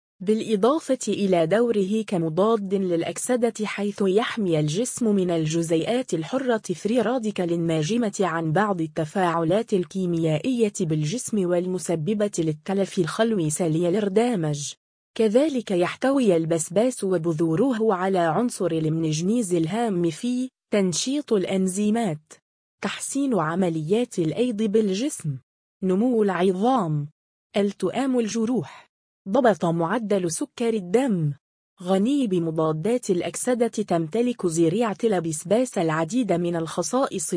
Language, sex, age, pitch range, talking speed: Arabic, female, 20-39, 170-230 Hz, 90 wpm